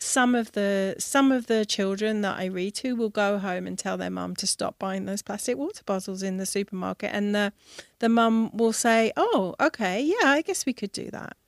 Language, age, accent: English, 40-59, British